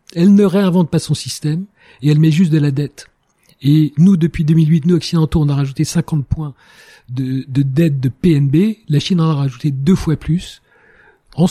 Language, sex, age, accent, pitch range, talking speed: French, male, 40-59, French, 155-190 Hz, 200 wpm